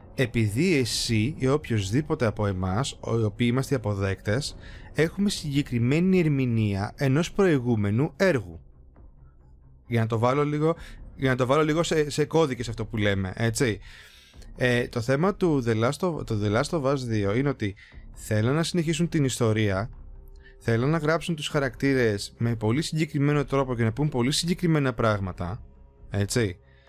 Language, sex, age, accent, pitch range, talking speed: Greek, male, 20-39, native, 110-140 Hz, 155 wpm